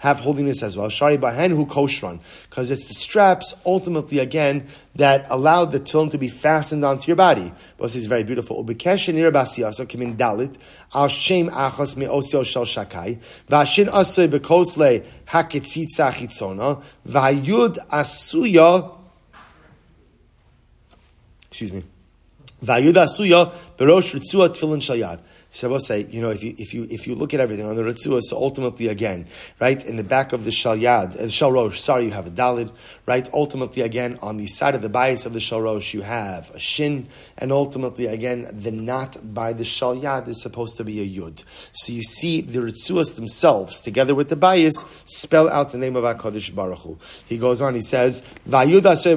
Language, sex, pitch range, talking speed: English, male, 115-150 Hz, 150 wpm